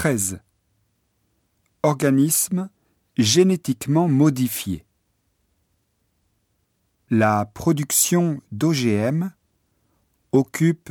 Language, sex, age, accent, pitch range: Japanese, male, 50-69, French, 100-145 Hz